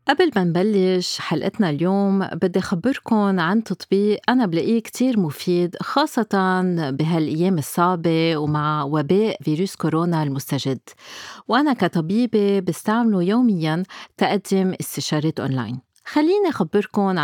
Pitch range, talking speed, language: 170-225 Hz, 105 wpm, Arabic